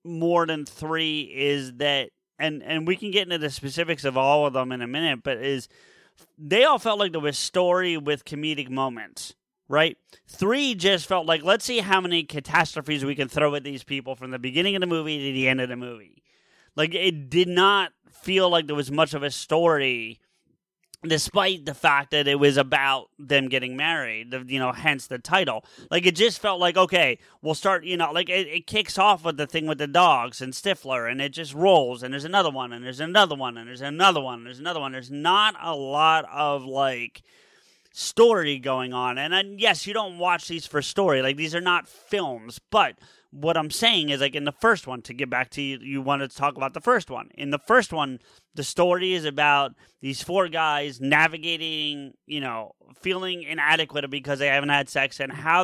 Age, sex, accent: 30-49, male, American